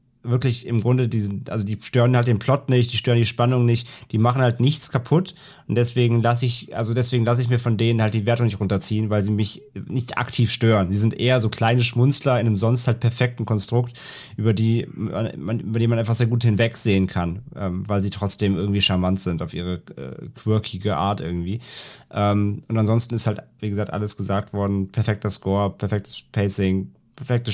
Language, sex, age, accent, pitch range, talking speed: German, male, 30-49, German, 100-120 Hz, 200 wpm